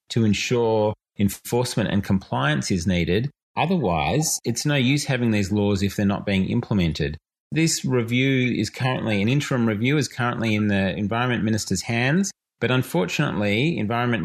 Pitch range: 100-140 Hz